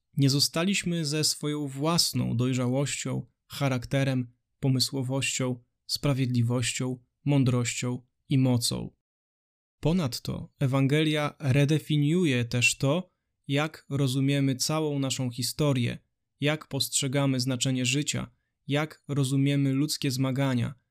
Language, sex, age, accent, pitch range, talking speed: Polish, male, 20-39, native, 125-145 Hz, 85 wpm